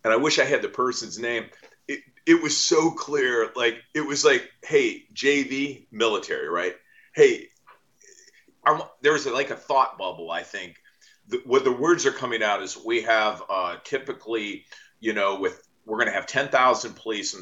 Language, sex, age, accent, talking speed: English, male, 40-59, American, 180 wpm